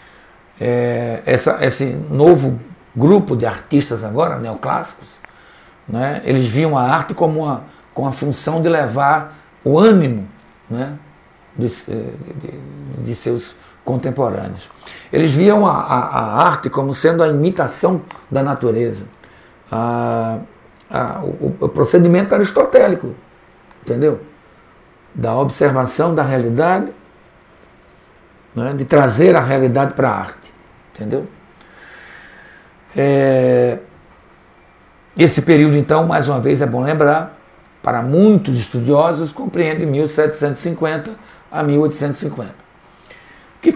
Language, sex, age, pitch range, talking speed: Portuguese, male, 60-79, 115-155 Hz, 105 wpm